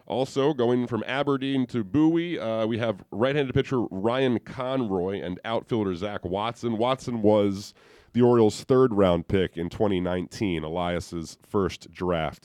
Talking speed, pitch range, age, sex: 140 wpm, 95-130 Hz, 30-49, male